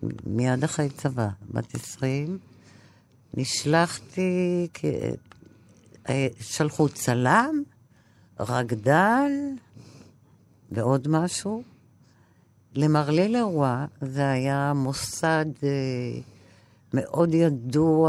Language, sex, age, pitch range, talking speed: Hebrew, female, 50-69, 120-155 Hz, 60 wpm